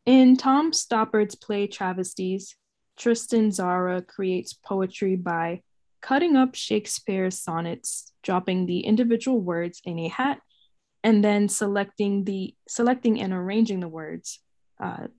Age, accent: 10-29, American